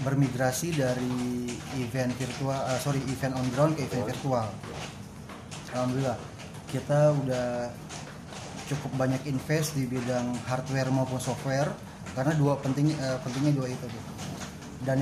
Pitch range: 130-150 Hz